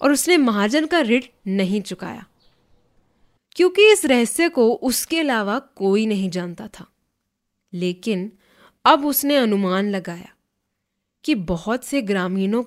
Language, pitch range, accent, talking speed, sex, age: Hindi, 195-275 Hz, native, 125 wpm, female, 20-39